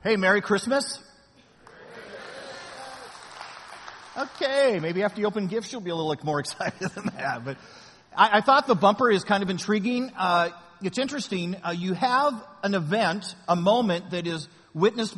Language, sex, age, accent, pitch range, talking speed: English, male, 50-69, American, 160-220 Hz, 160 wpm